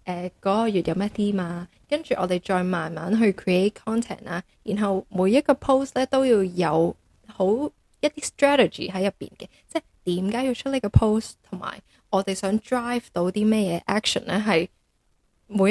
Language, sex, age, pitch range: Chinese, female, 10-29, 185-240 Hz